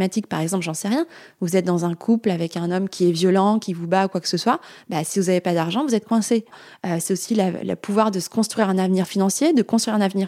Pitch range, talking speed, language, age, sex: 180-225 Hz, 280 wpm, French, 20-39, female